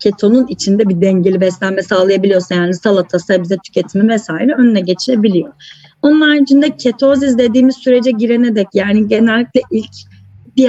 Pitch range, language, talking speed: 190-250 Hz, Turkish, 135 wpm